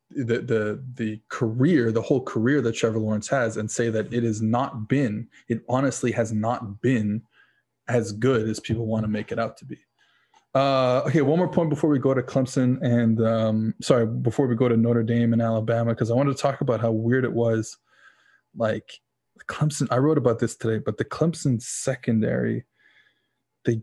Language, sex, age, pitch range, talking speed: English, male, 20-39, 115-140 Hz, 195 wpm